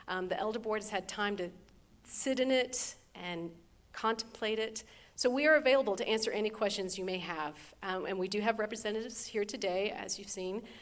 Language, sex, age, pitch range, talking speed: English, female, 40-59, 185-215 Hz, 200 wpm